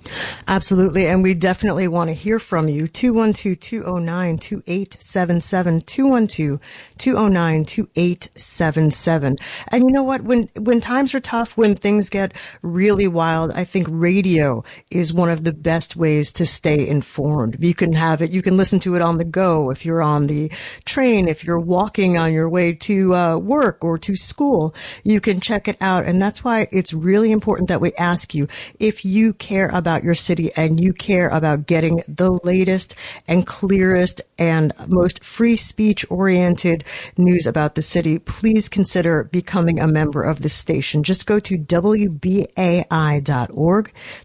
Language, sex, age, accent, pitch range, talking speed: English, female, 40-59, American, 165-195 Hz, 160 wpm